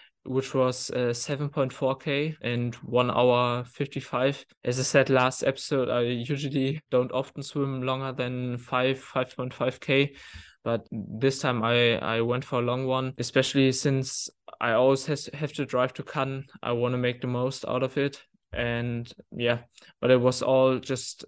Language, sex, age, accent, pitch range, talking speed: English, male, 20-39, German, 125-135 Hz, 160 wpm